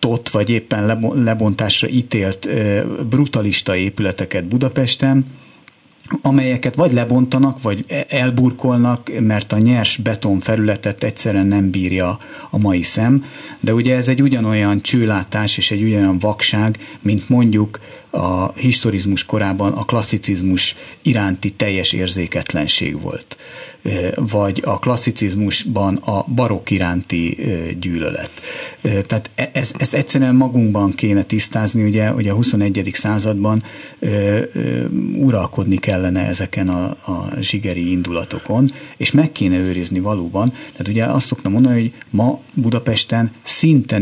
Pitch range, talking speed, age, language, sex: 95-120 Hz, 115 wpm, 60-79, Hungarian, male